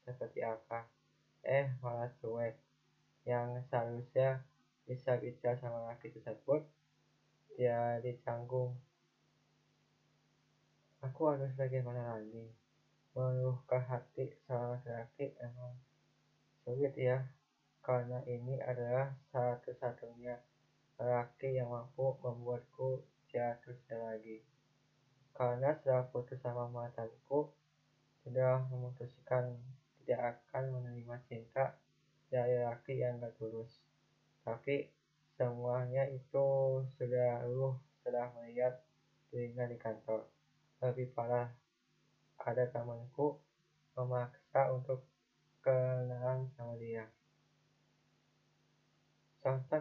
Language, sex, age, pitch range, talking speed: Indonesian, male, 20-39, 120-135 Hz, 85 wpm